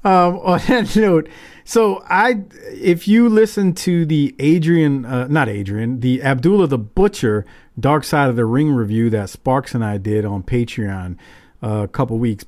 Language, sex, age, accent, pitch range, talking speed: English, male, 40-59, American, 115-155 Hz, 175 wpm